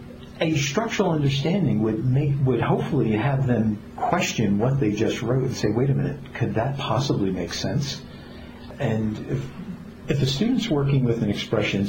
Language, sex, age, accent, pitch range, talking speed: English, male, 50-69, American, 110-140 Hz, 165 wpm